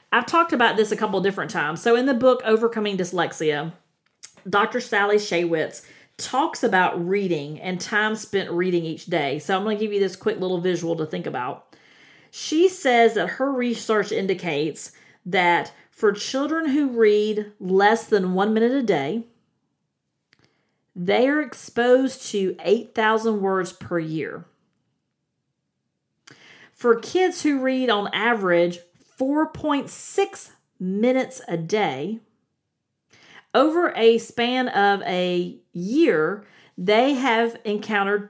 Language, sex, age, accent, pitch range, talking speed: English, female, 40-59, American, 185-255 Hz, 130 wpm